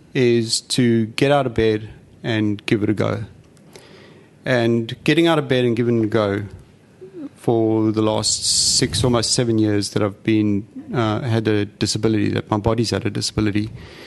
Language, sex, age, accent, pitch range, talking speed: English, male, 40-59, Australian, 110-125 Hz, 175 wpm